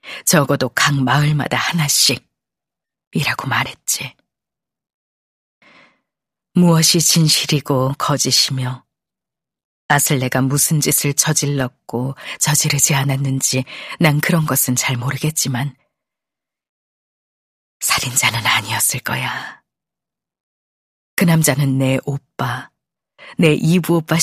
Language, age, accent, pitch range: Korean, 40-59, native, 135-165 Hz